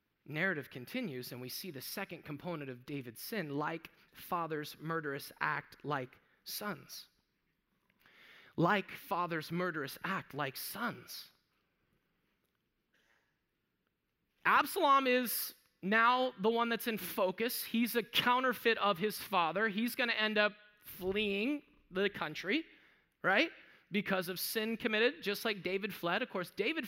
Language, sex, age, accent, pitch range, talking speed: English, male, 30-49, American, 170-225 Hz, 125 wpm